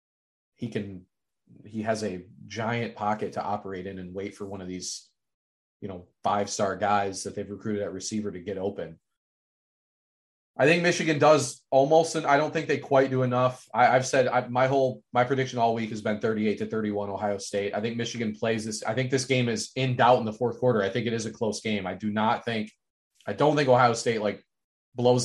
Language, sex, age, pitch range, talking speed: English, male, 30-49, 105-125 Hz, 220 wpm